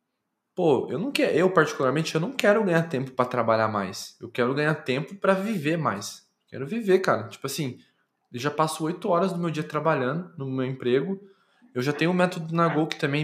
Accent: Brazilian